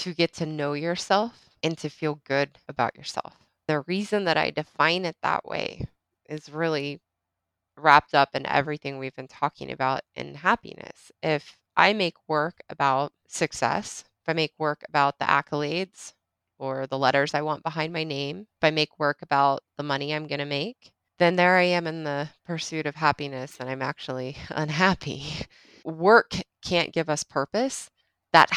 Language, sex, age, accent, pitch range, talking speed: English, female, 20-39, American, 145-175 Hz, 170 wpm